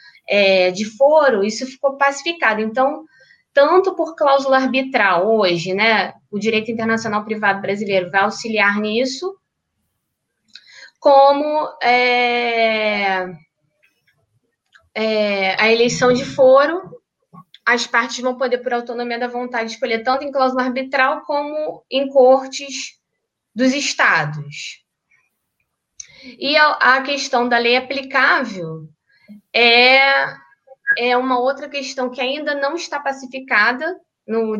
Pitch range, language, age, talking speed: 210-270 Hz, Portuguese, 10-29, 105 wpm